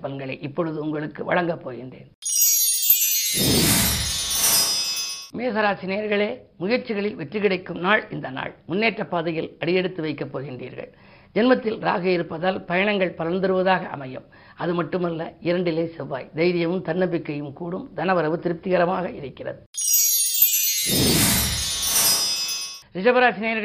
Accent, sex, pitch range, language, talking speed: native, female, 165-200 Hz, Tamil, 55 wpm